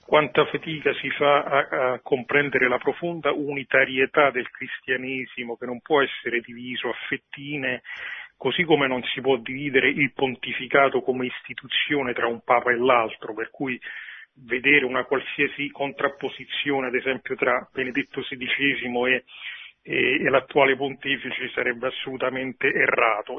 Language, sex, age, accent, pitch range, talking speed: Italian, male, 40-59, native, 125-140 Hz, 135 wpm